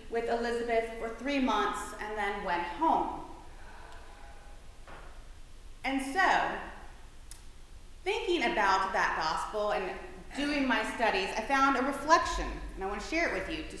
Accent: American